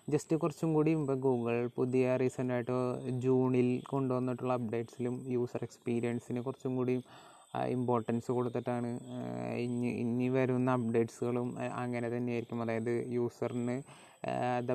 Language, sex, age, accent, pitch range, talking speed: Malayalam, male, 20-39, native, 120-130 Hz, 100 wpm